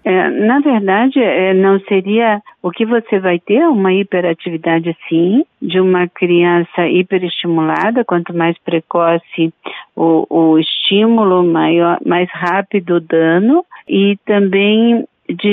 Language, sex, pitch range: Portuguese, female, 175-215 Hz